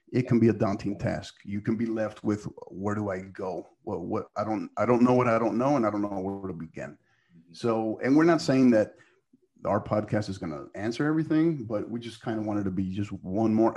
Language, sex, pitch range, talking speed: English, male, 100-120 Hz, 255 wpm